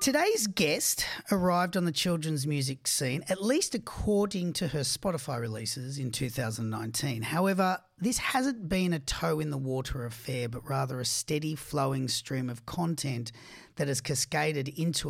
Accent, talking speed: Australian, 140 wpm